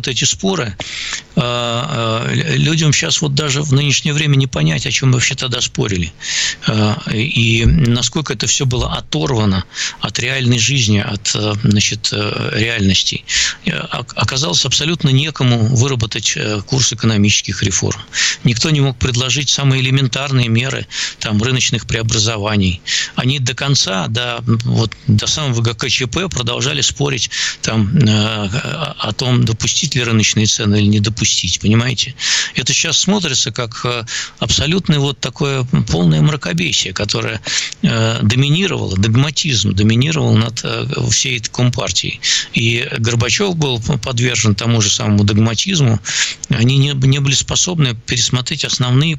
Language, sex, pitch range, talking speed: Russian, male, 110-140 Hz, 120 wpm